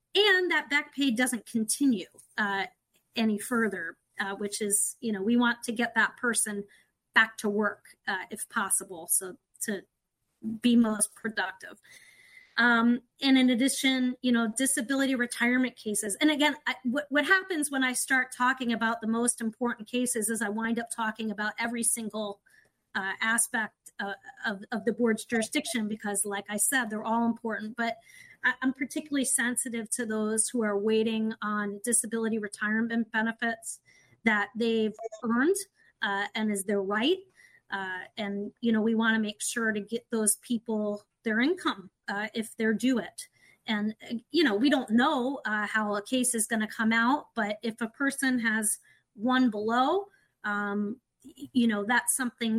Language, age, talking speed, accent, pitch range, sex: English, 30-49, 165 wpm, American, 215-250 Hz, female